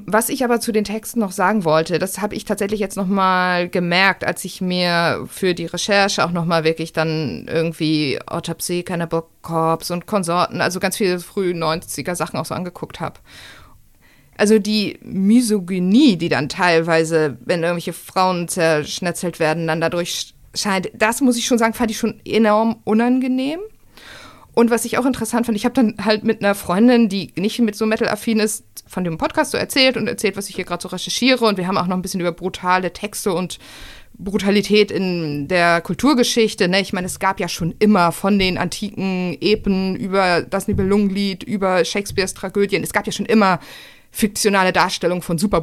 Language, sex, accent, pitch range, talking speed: German, female, German, 170-215 Hz, 185 wpm